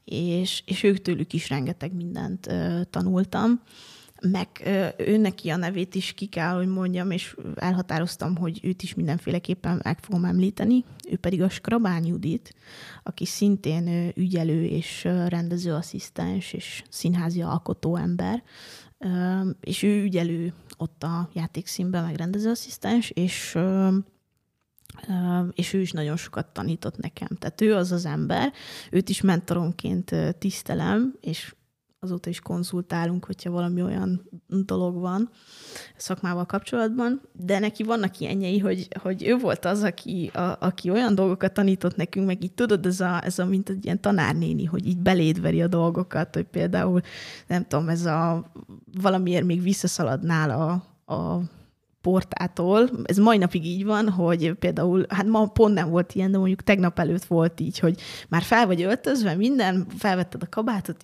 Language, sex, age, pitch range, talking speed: Hungarian, female, 20-39, 170-195 Hz, 150 wpm